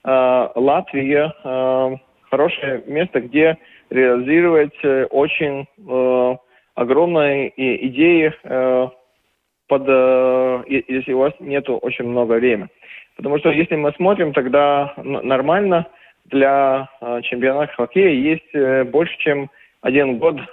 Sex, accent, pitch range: male, native, 125-150 Hz